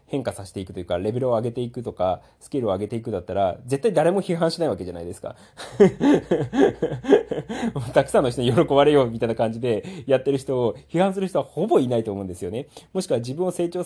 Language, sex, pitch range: Japanese, male, 110-165 Hz